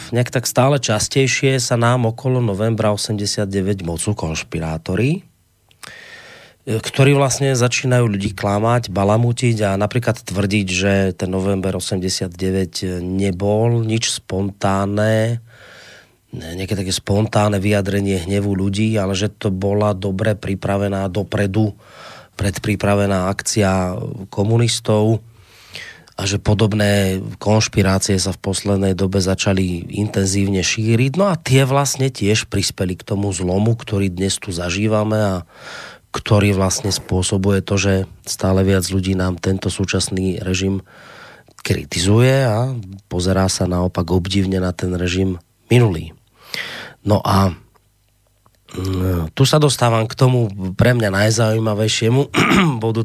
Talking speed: 115 wpm